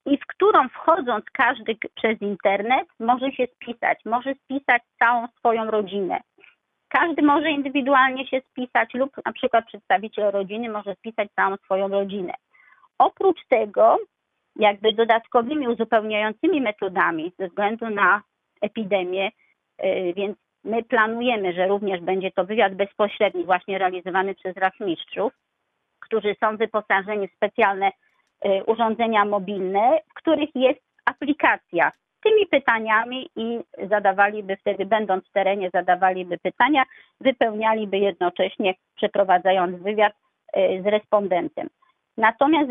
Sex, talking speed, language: female, 115 wpm, Polish